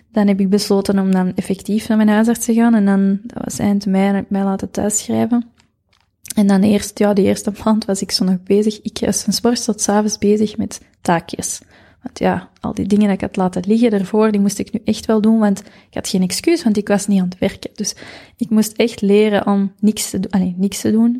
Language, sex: Dutch, female